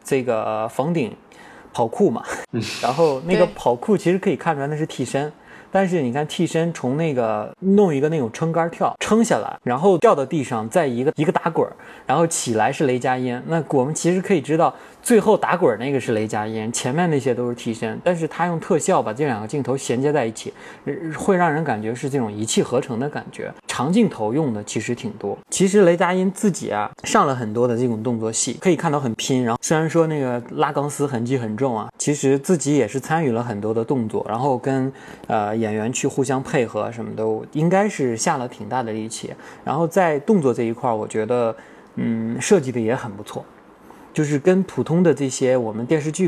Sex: male